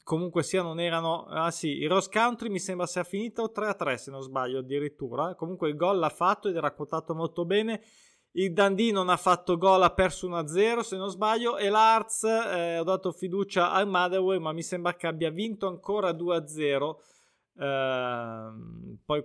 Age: 20-39